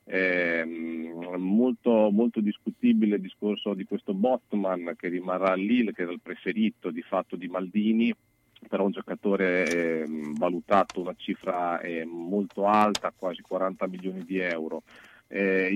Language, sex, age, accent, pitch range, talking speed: Italian, male, 40-59, native, 95-115 Hz, 135 wpm